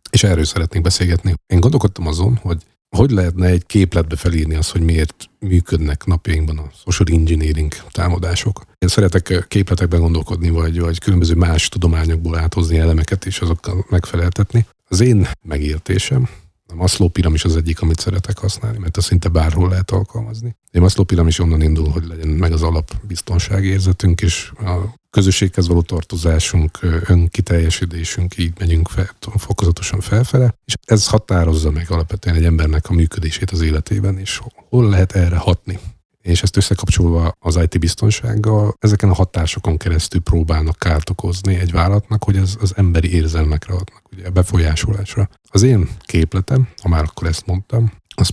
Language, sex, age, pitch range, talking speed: Hungarian, male, 50-69, 85-100 Hz, 155 wpm